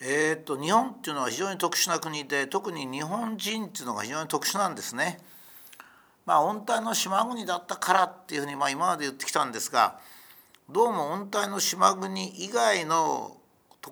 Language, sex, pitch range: Japanese, male, 130-195 Hz